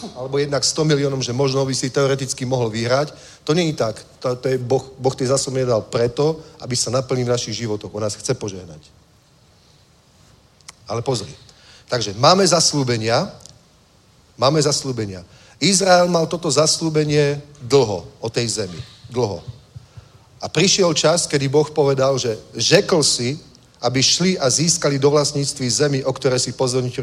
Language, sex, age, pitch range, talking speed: Czech, male, 40-59, 125-150 Hz, 155 wpm